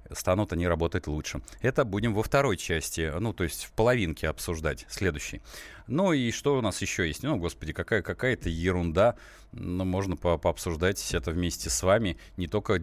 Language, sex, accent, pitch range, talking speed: Russian, male, native, 90-115 Hz, 170 wpm